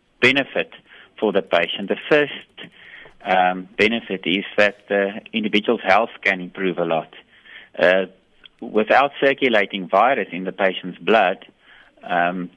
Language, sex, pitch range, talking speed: English, male, 95-110 Hz, 125 wpm